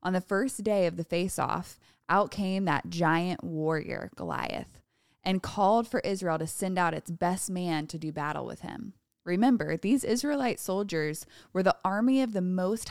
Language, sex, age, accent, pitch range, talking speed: English, female, 20-39, American, 180-235 Hz, 175 wpm